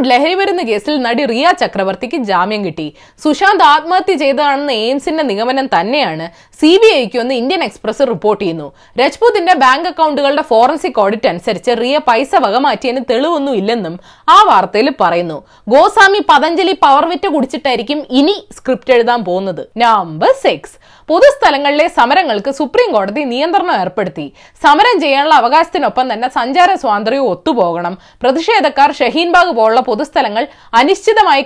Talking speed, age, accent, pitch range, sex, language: 110 wpm, 20-39, native, 230-335 Hz, female, Malayalam